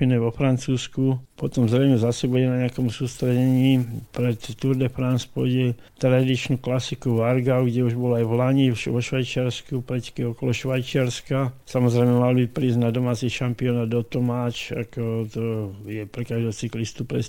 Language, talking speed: Slovak, 145 wpm